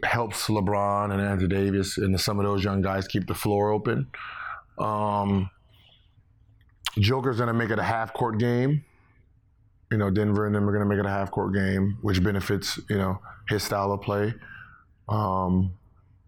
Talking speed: 170 wpm